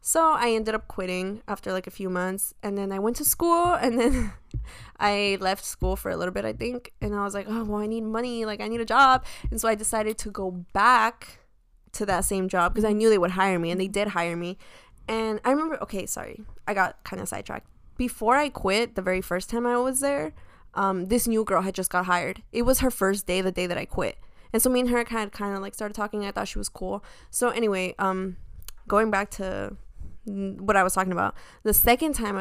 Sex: female